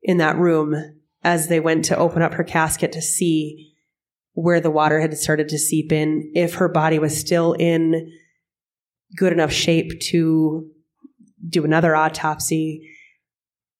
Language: English